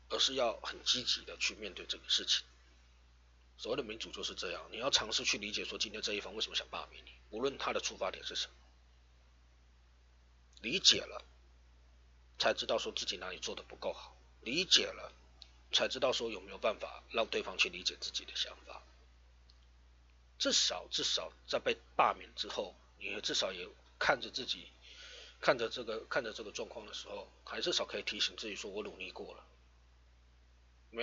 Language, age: Chinese, 30-49